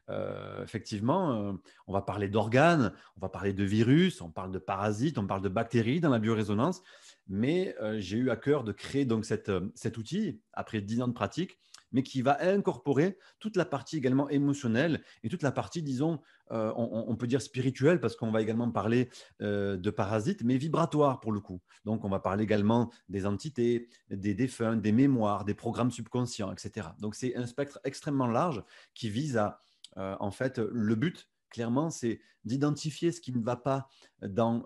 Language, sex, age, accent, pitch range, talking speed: French, male, 30-49, French, 105-135 Hz, 195 wpm